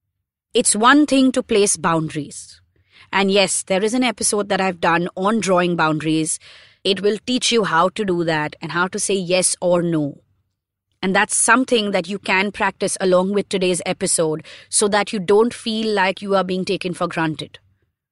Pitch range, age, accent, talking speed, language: 165-205 Hz, 30-49, Indian, 185 wpm, English